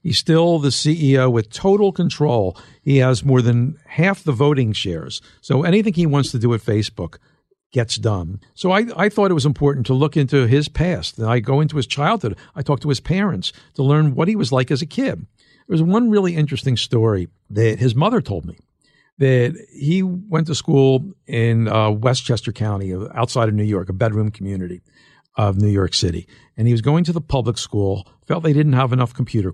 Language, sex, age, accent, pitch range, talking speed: English, male, 50-69, American, 110-165 Hz, 205 wpm